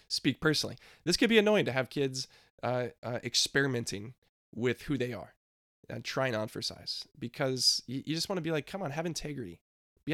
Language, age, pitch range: English, 20-39, 120-150 Hz